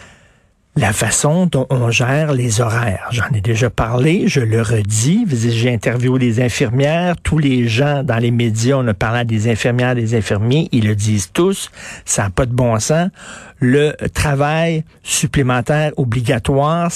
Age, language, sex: 50-69, French, male